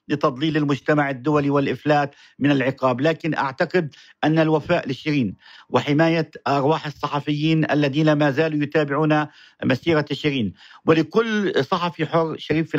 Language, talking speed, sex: Arabic, 115 wpm, male